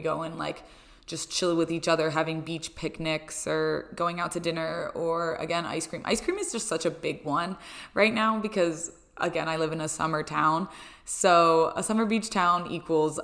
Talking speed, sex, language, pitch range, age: 200 wpm, female, English, 160-200 Hz, 20-39